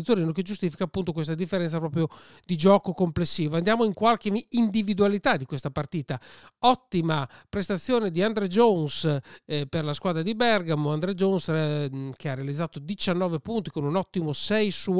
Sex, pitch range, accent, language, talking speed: male, 160-205 Hz, native, Italian, 165 wpm